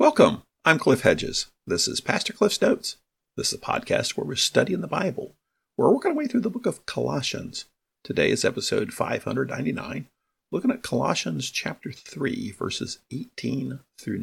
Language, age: English, 50-69